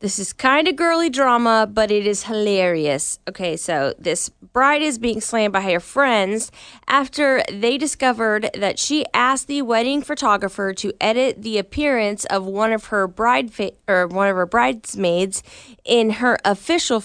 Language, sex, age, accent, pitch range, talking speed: English, female, 20-39, American, 195-240 Hz, 165 wpm